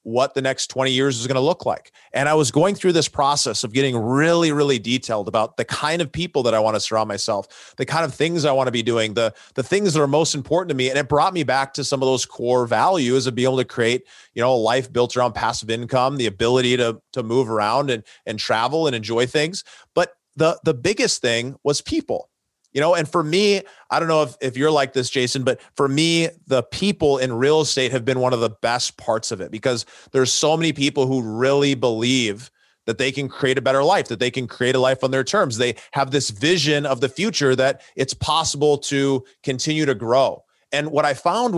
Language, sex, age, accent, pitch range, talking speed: English, male, 30-49, American, 125-150 Hz, 235 wpm